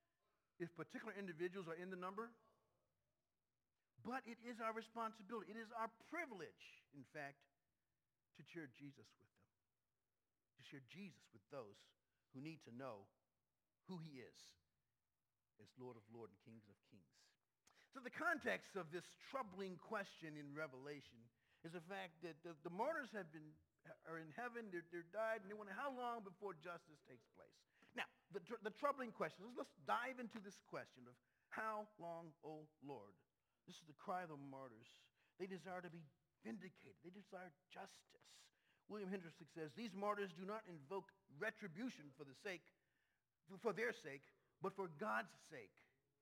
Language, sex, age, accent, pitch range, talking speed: English, male, 50-69, American, 140-215 Hz, 160 wpm